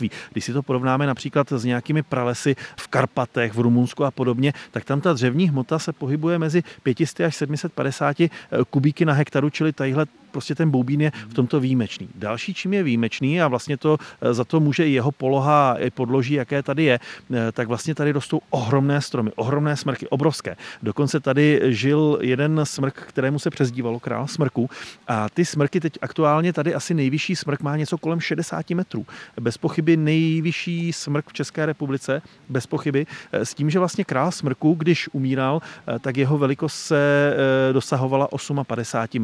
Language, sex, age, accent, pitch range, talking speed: Czech, male, 40-59, native, 130-160 Hz, 170 wpm